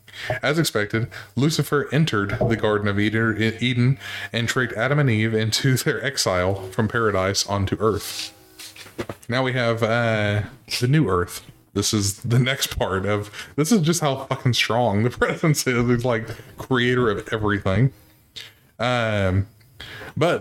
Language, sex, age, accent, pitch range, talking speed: English, male, 20-39, American, 105-125 Hz, 145 wpm